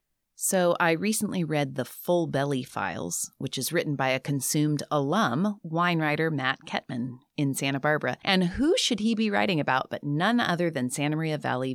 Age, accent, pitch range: 30-49, American, 135-175 Hz